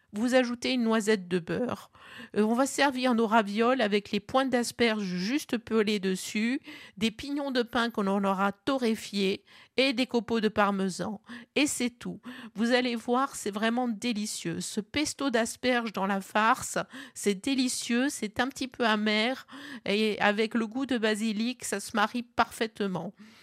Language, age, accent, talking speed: French, 50-69, French, 160 wpm